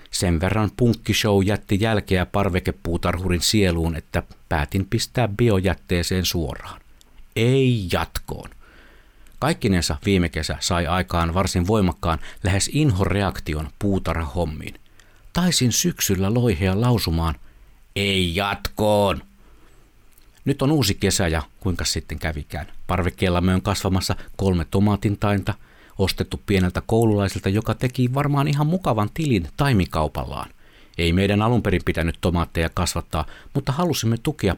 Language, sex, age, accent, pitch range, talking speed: Finnish, male, 60-79, native, 85-120 Hz, 110 wpm